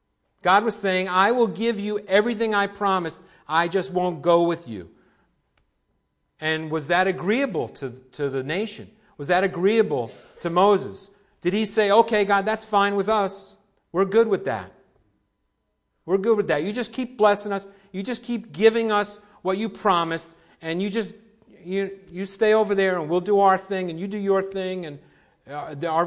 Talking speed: 180 wpm